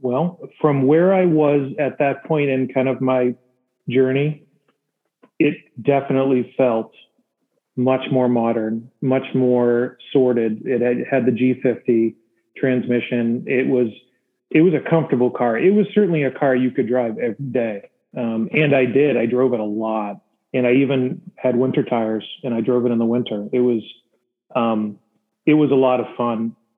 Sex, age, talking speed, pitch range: male, 40-59, 170 wpm, 120-145 Hz